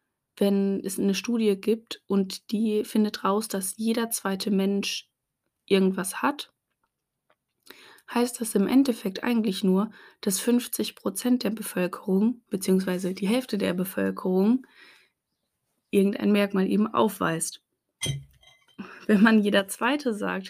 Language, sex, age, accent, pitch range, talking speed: German, female, 20-39, German, 195-225 Hz, 115 wpm